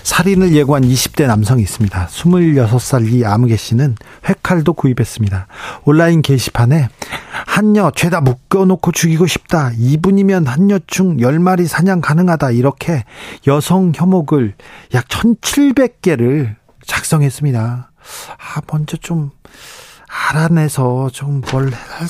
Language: Korean